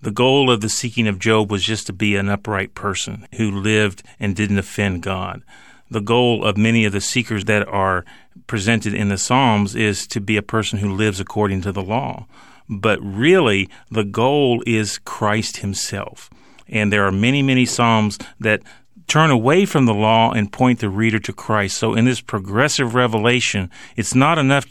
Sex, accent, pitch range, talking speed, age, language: male, American, 105-130 Hz, 185 wpm, 40-59, English